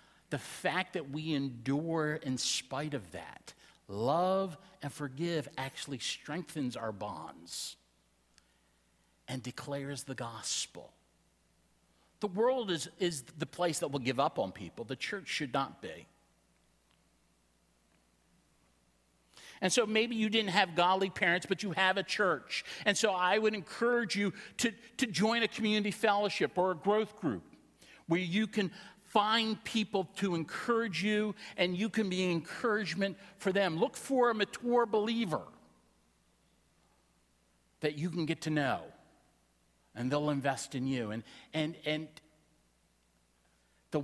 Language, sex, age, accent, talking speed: English, male, 50-69, American, 140 wpm